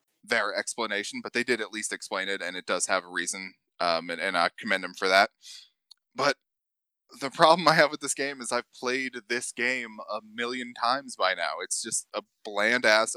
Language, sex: English, male